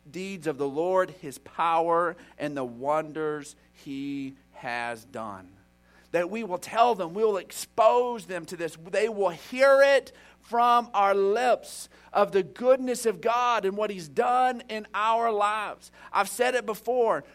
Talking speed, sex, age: 160 wpm, male, 50-69